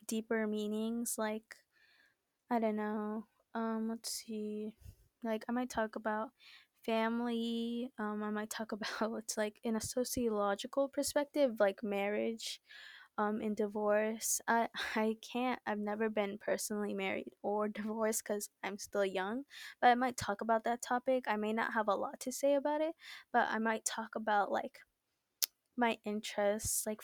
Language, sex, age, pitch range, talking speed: English, female, 20-39, 215-245 Hz, 160 wpm